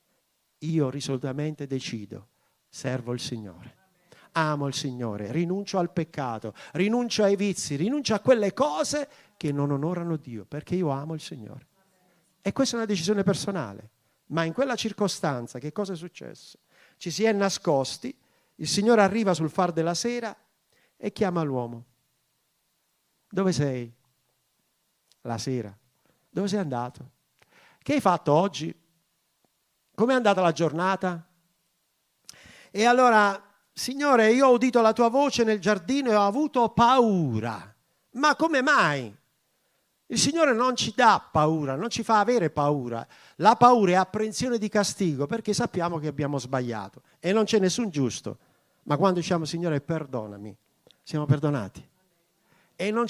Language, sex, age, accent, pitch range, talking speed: Italian, male, 50-69, native, 140-215 Hz, 140 wpm